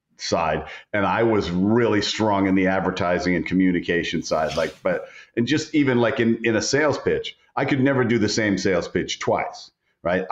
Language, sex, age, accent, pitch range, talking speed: English, male, 50-69, American, 100-130 Hz, 190 wpm